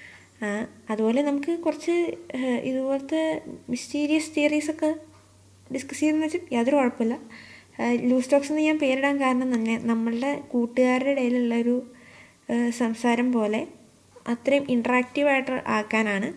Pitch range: 220-260 Hz